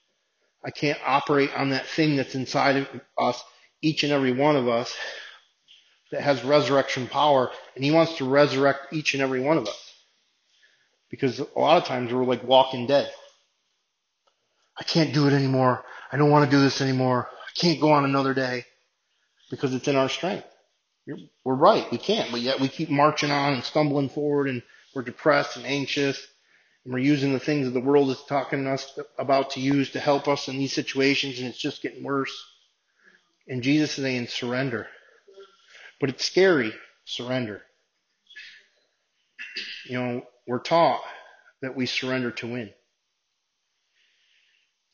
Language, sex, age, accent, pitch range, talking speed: English, male, 30-49, American, 125-145 Hz, 170 wpm